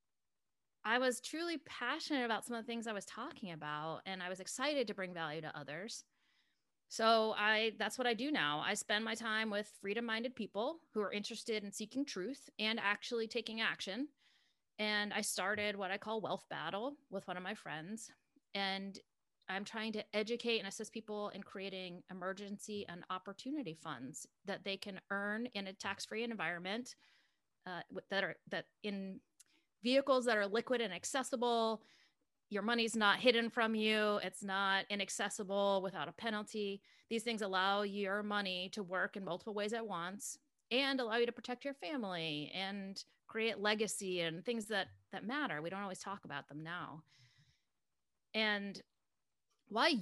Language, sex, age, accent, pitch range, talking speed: English, female, 30-49, American, 190-235 Hz, 170 wpm